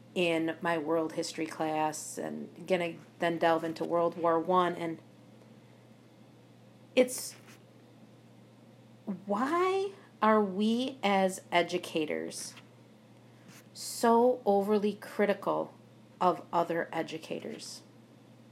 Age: 40-59